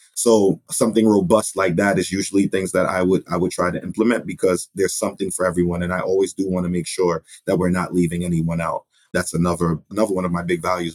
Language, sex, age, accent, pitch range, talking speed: English, male, 30-49, American, 90-100 Hz, 235 wpm